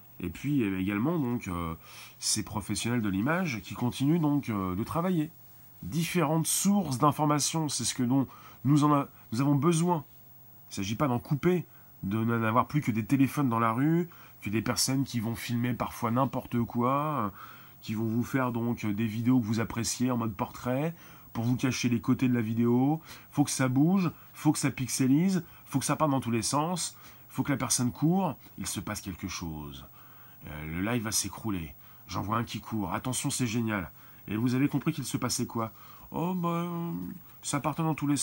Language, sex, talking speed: French, male, 205 wpm